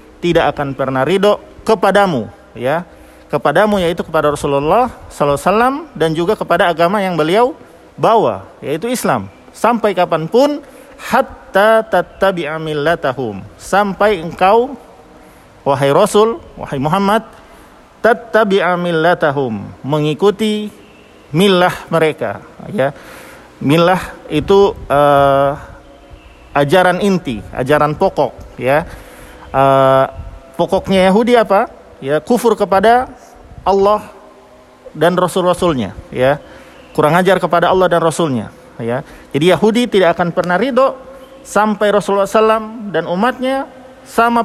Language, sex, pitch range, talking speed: Indonesian, male, 155-225 Hz, 105 wpm